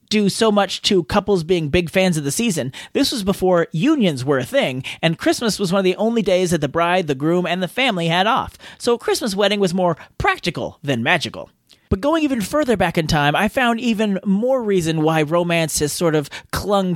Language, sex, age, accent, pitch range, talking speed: English, male, 30-49, American, 165-230 Hz, 225 wpm